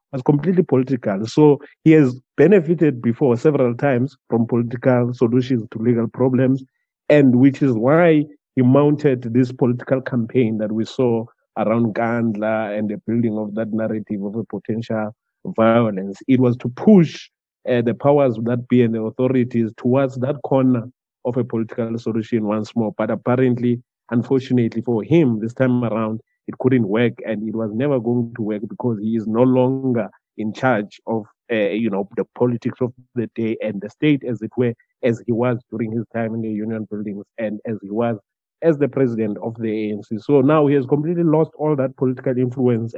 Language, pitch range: English, 115-130 Hz